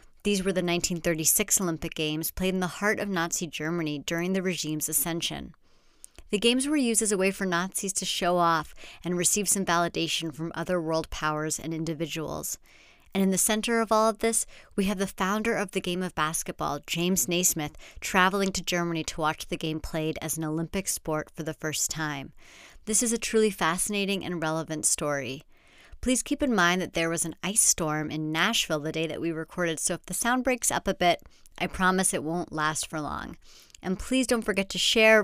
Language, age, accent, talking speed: English, 40-59, American, 205 wpm